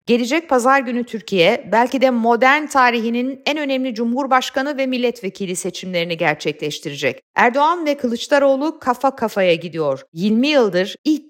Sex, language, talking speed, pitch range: female, Turkish, 130 wpm, 190-270 Hz